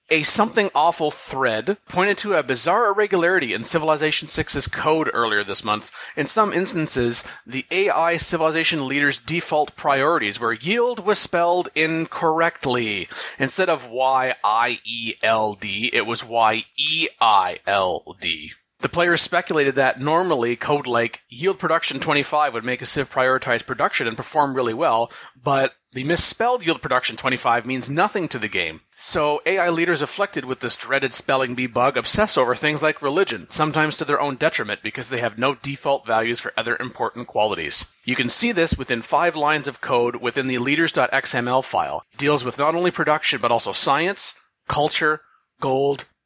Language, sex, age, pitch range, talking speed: English, male, 30-49, 125-160 Hz, 155 wpm